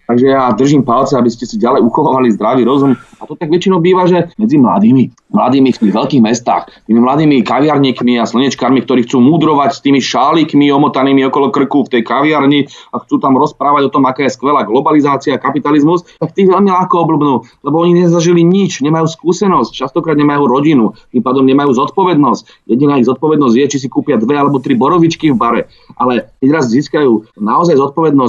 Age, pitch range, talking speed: 30-49, 130-165 Hz, 185 wpm